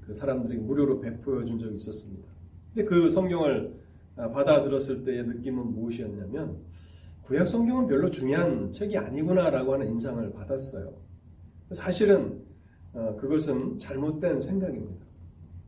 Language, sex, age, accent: Korean, male, 40-59, native